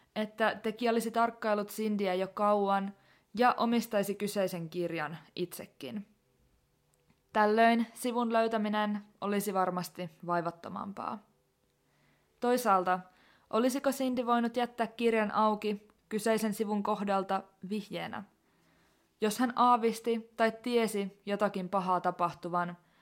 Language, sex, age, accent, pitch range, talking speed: Finnish, female, 20-39, native, 185-225 Hz, 95 wpm